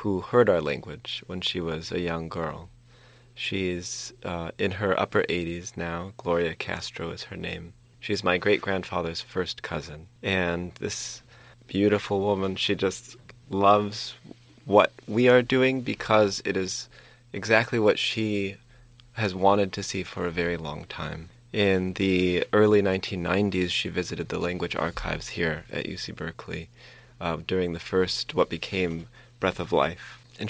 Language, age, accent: English, 30-49, American